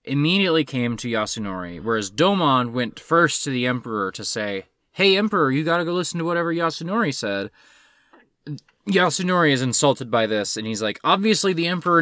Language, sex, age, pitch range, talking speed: English, male, 20-39, 115-165 Hz, 170 wpm